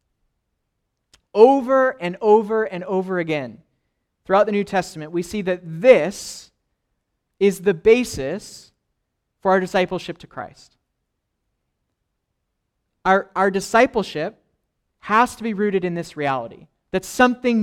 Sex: male